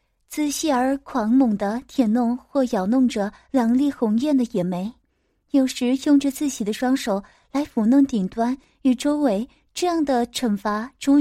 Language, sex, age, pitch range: Chinese, female, 20-39, 225-280 Hz